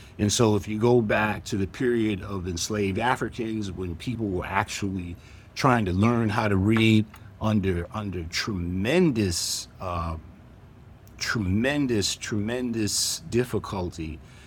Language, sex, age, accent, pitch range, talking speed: English, male, 50-69, American, 95-115 Hz, 120 wpm